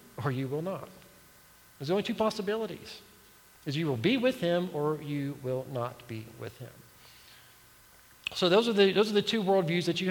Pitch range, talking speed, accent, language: 130-175 Hz, 190 wpm, American, English